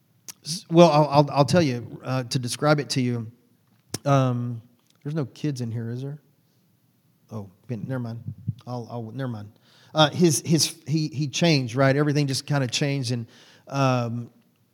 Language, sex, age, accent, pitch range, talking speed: English, male, 40-59, American, 125-150 Hz, 165 wpm